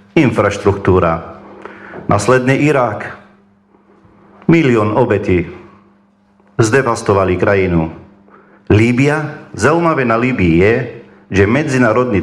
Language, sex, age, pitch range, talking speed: English, male, 50-69, 100-130 Hz, 70 wpm